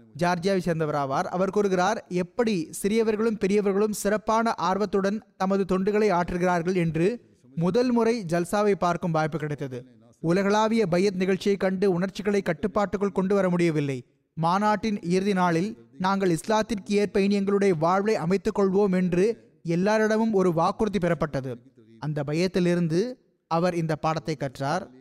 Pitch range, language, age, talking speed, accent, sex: 170-210 Hz, Tamil, 20-39, 100 wpm, native, male